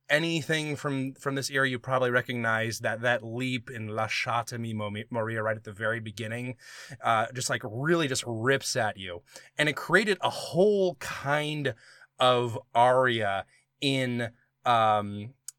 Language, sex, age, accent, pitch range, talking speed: English, male, 20-39, American, 115-145 Hz, 150 wpm